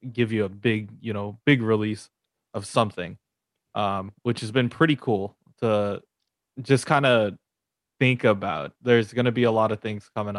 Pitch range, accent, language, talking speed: 105-135 Hz, American, English, 180 wpm